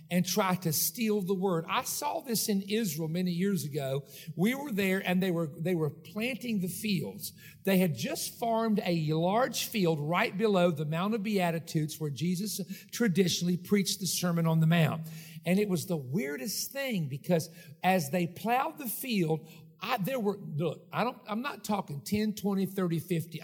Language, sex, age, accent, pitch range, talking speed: English, male, 50-69, American, 165-210 Hz, 185 wpm